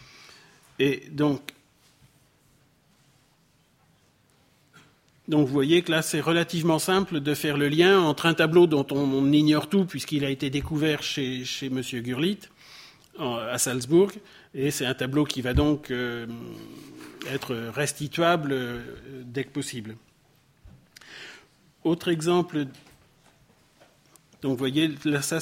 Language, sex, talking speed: French, male, 125 wpm